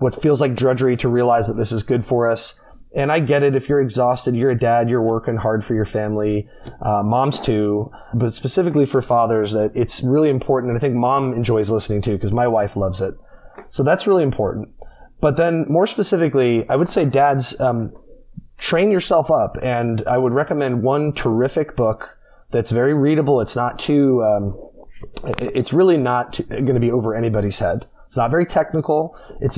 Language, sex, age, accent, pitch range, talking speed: English, male, 30-49, American, 110-140 Hz, 195 wpm